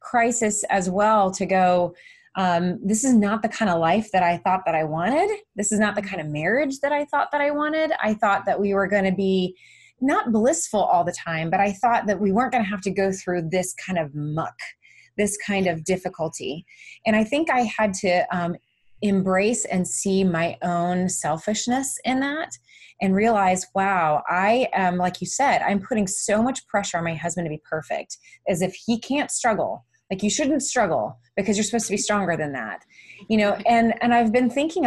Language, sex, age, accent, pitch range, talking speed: English, female, 20-39, American, 175-220 Hz, 210 wpm